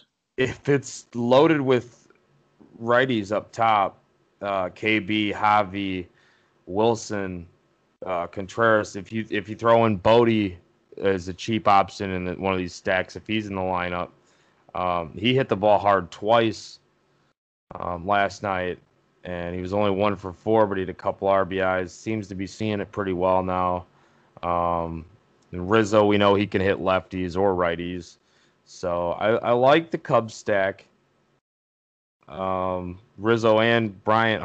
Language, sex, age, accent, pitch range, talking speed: English, male, 20-39, American, 90-115 Hz, 150 wpm